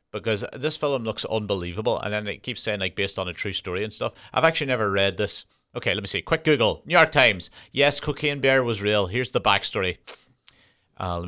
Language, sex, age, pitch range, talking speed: English, male, 30-49, 100-130 Hz, 225 wpm